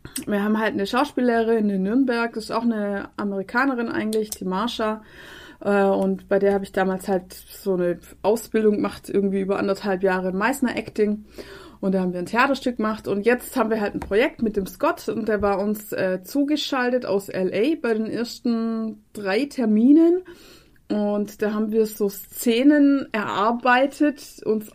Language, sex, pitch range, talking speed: German, female, 195-240 Hz, 170 wpm